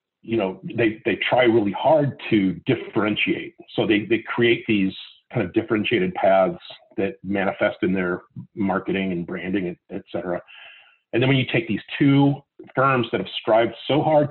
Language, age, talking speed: English, 40-59, 170 wpm